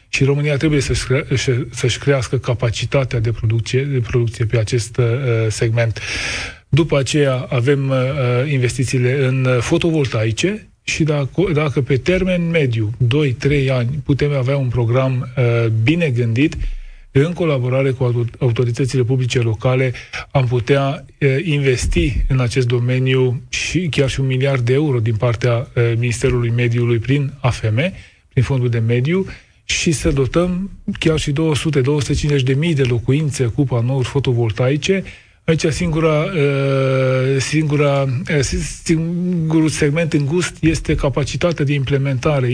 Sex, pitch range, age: male, 125-150 Hz, 20-39